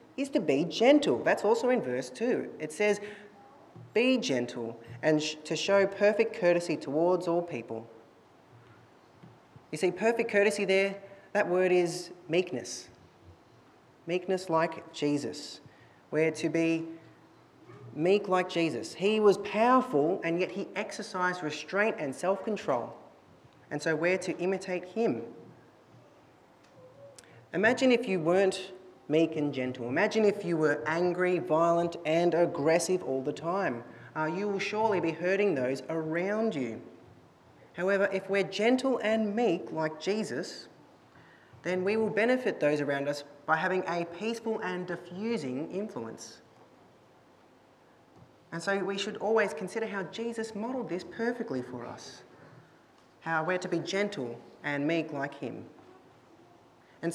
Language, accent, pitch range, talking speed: English, Australian, 155-205 Hz, 135 wpm